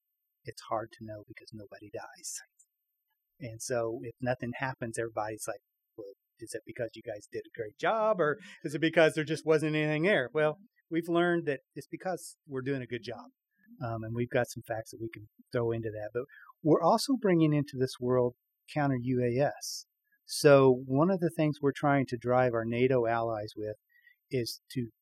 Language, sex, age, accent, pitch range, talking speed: English, male, 40-59, American, 120-155 Hz, 190 wpm